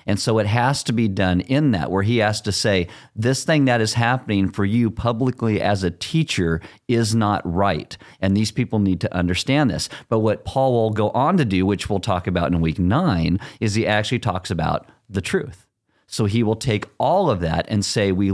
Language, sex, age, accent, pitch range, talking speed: English, male, 40-59, American, 95-120 Hz, 220 wpm